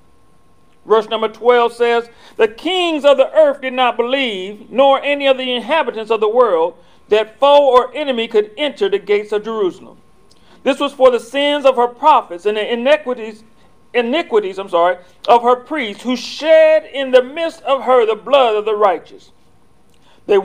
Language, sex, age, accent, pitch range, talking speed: English, male, 40-59, American, 225-280 Hz, 175 wpm